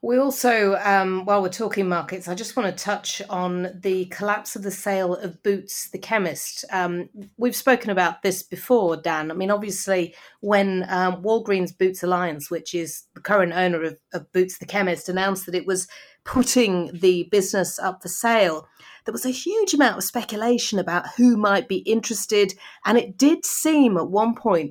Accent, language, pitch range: British, English, 180-210 Hz